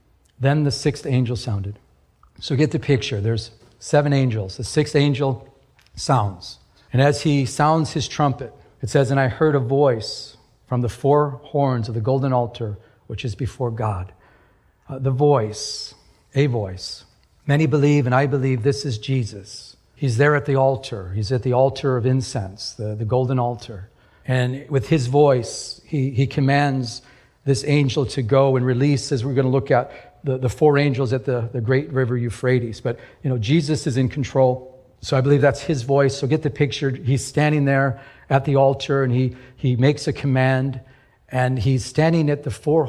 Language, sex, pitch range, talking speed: English, male, 120-140 Hz, 185 wpm